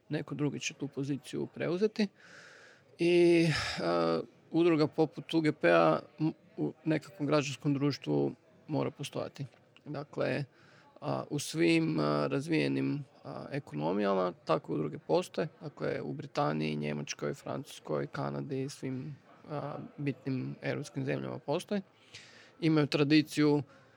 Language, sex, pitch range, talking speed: Croatian, male, 125-150 Hz, 115 wpm